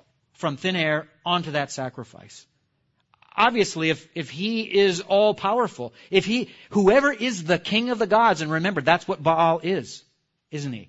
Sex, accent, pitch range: male, American, 135-175 Hz